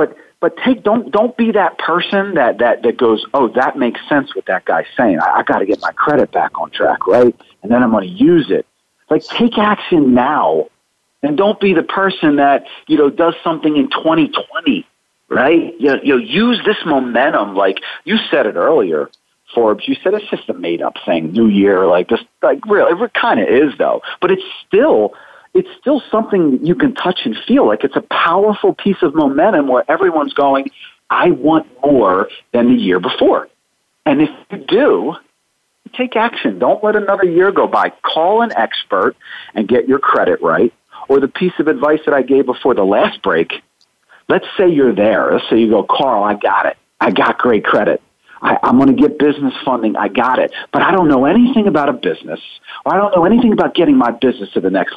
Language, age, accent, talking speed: English, 40-59, American, 205 wpm